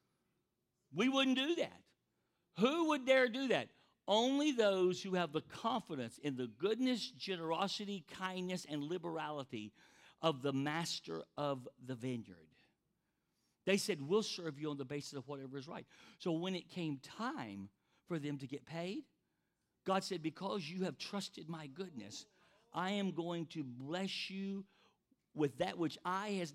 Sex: male